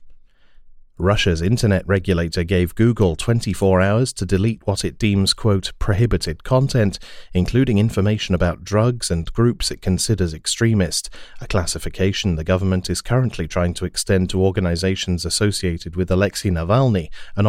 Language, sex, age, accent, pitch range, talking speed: English, male, 30-49, British, 90-110 Hz, 135 wpm